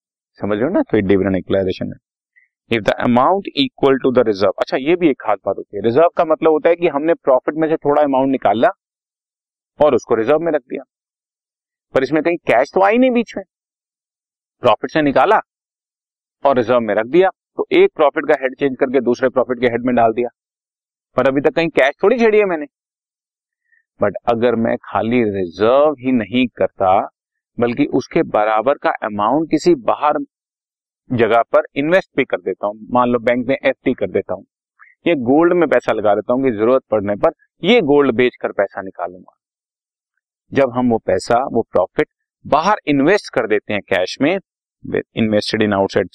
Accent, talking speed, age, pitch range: native, 90 wpm, 40-59, 110-170 Hz